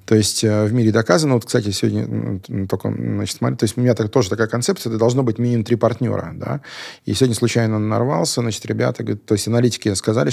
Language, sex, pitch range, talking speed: Russian, male, 105-125 Hz, 215 wpm